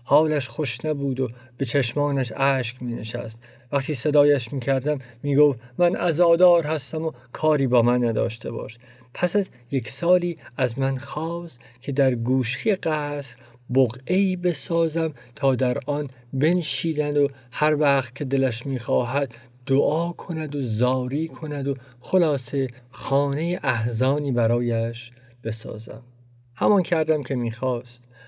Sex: male